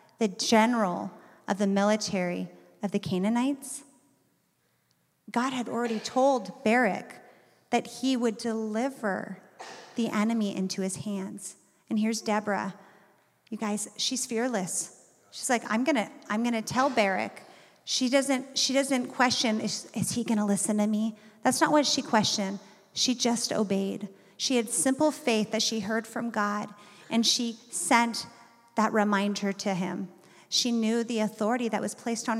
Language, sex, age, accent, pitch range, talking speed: English, female, 30-49, American, 205-245 Hz, 150 wpm